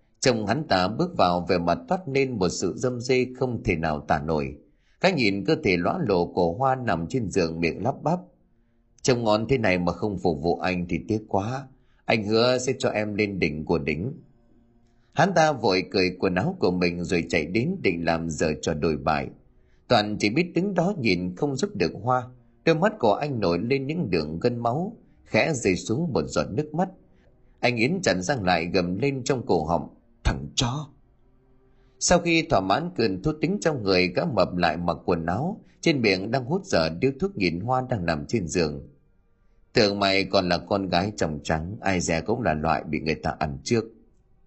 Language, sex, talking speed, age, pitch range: Vietnamese, male, 210 wpm, 30-49, 85-135 Hz